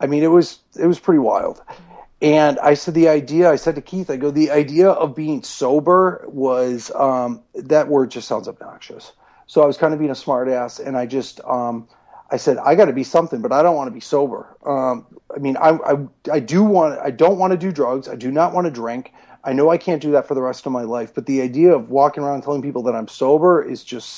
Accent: American